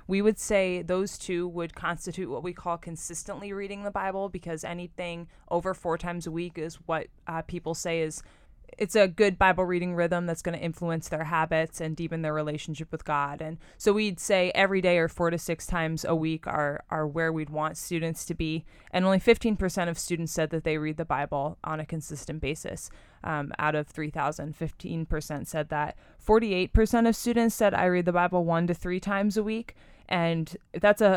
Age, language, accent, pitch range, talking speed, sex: 20-39, English, American, 155-180 Hz, 210 wpm, female